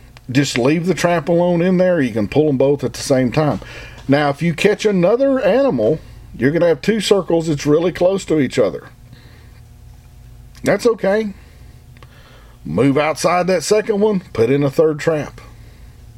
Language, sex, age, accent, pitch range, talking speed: English, male, 40-59, American, 115-165 Hz, 165 wpm